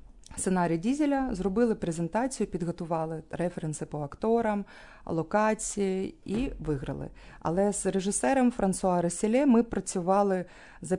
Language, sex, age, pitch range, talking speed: Ukrainian, female, 30-49, 160-200 Hz, 105 wpm